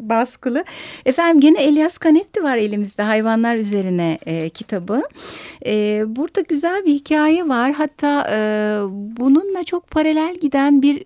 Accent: native